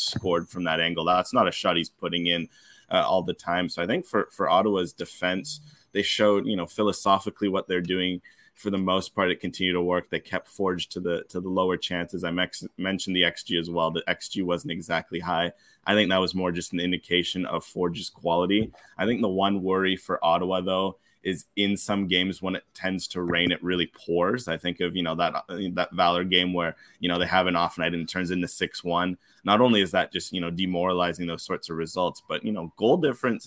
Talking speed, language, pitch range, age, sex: 230 wpm, English, 90-95 Hz, 20-39, male